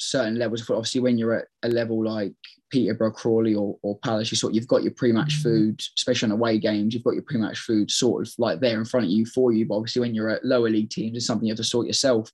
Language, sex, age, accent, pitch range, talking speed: English, male, 10-29, British, 110-120 Hz, 280 wpm